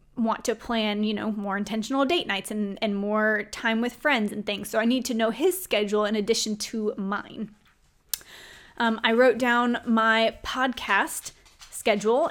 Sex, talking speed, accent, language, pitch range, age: female, 170 wpm, American, English, 215-265 Hz, 20-39